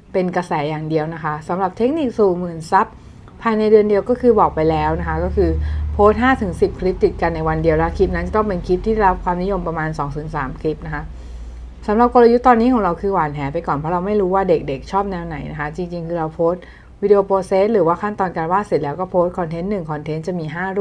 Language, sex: Thai, female